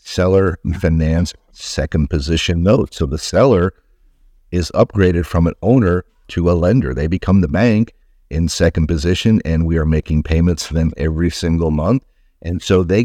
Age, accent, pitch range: 50-69, American, 80-100 Hz